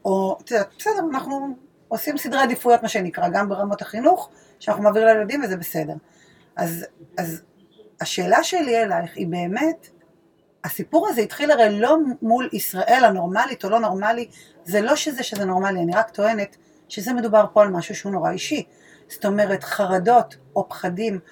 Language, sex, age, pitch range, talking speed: Hebrew, female, 30-49, 190-270 Hz, 155 wpm